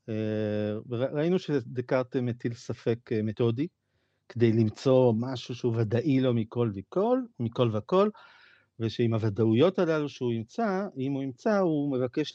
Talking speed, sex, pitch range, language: 120 wpm, male, 115-155 Hz, Hebrew